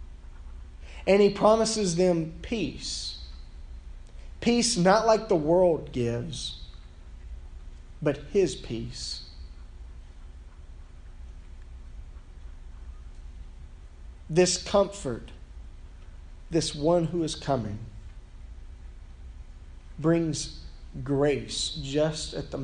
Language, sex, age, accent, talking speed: English, male, 40-59, American, 70 wpm